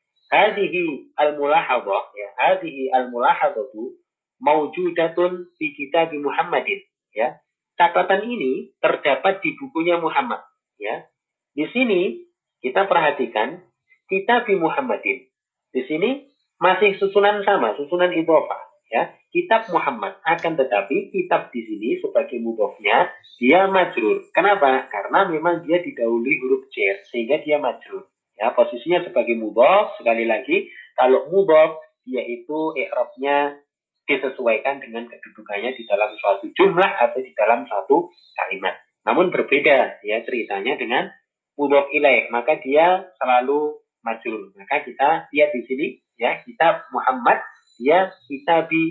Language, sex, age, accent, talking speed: Indonesian, male, 30-49, native, 115 wpm